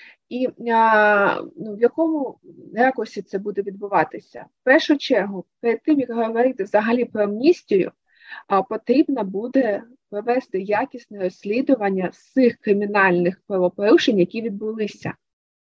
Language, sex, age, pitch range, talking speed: Ukrainian, female, 20-39, 200-245 Hz, 115 wpm